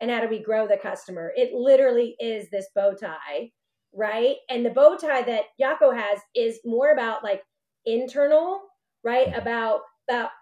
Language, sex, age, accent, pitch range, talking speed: English, female, 30-49, American, 215-280 Hz, 165 wpm